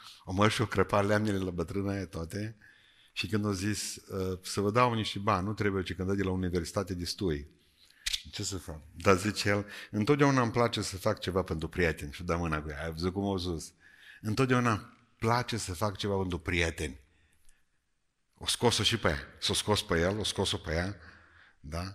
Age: 50-69